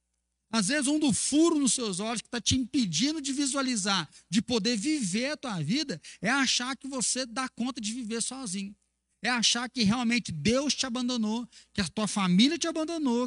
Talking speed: 190 wpm